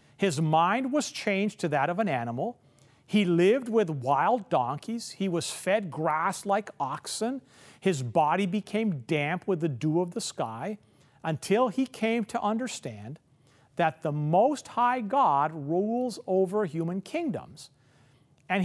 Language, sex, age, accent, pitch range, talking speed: English, male, 50-69, American, 145-230 Hz, 145 wpm